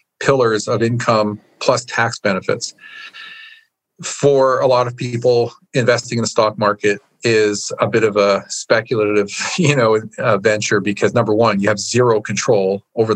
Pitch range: 105-130 Hz